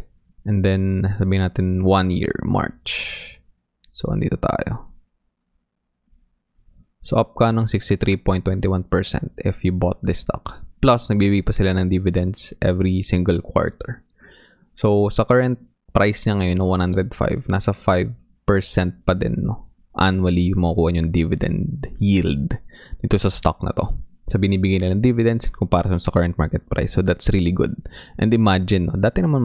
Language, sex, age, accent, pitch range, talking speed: English, male, 20-39, Filipino, 90-105 Hz, 130 wpm